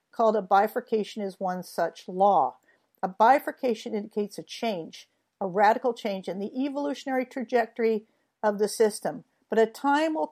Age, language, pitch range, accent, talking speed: 50-69, English, 205-260 Hz, American, 150 wpm